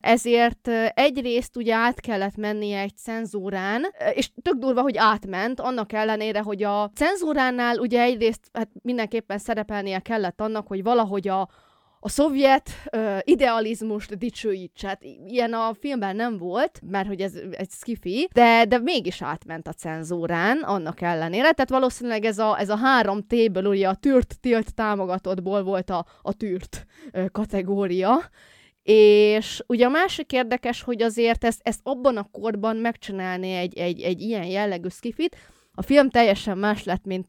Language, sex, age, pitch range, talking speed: Hungarian, female, 20-39, 190-240 Hz, 150 wpm